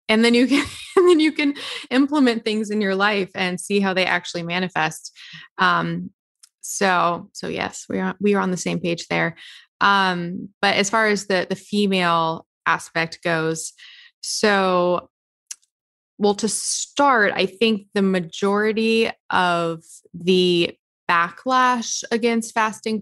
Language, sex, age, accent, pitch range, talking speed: English, female, 20-39, American, 175-210 Hz, 145 wpm